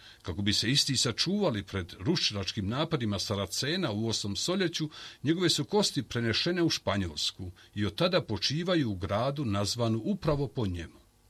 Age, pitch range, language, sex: 50-69, 105-160 Hz, Croatian, male